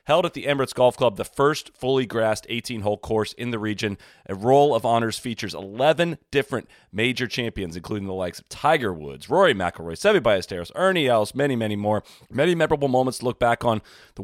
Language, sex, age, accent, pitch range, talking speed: English, male, 30-49, American, 100-130 Hz, 200 wpm